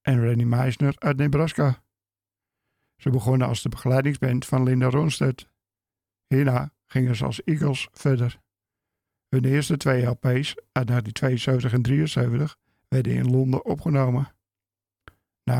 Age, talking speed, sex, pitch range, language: 50-69, 125 wpm, male, 110-135 Hz, Dutch